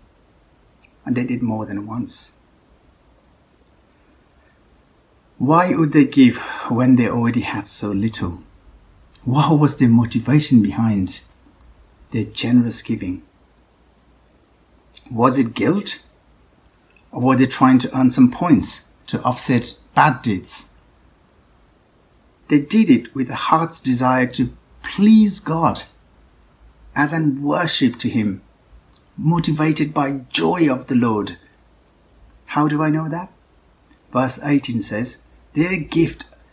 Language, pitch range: English, 100-145 Hz